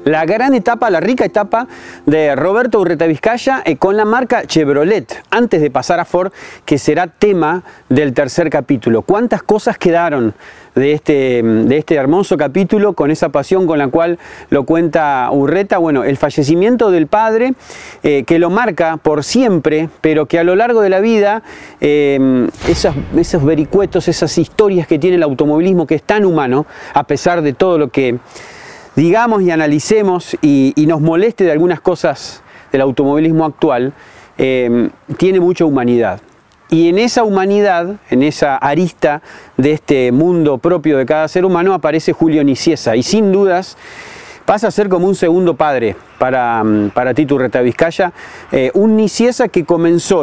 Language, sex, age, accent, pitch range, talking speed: Spanish, male, 40-59, Argentinian, 145-190 Hz, 160 wpm